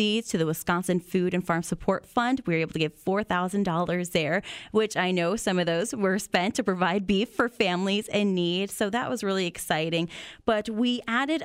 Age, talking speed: 20-39, 200 wpm